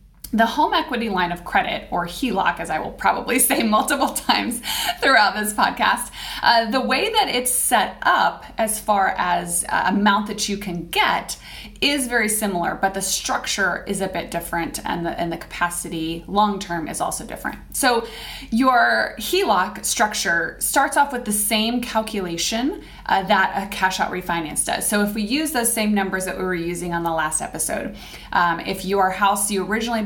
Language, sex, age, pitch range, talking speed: English, female, 20-39, 175-230 Hz, 180 wpm